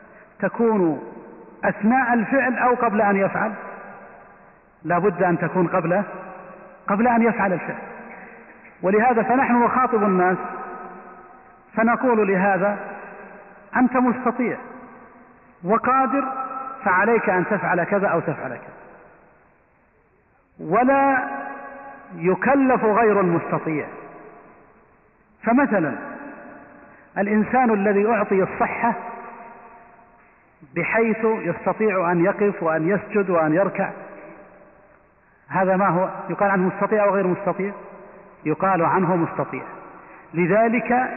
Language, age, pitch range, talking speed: Arabic, 40-59, 185-230 Hz, 90 wpm